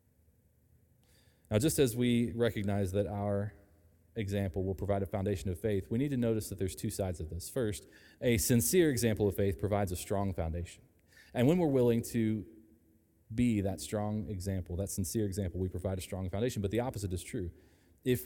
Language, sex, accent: English, male, American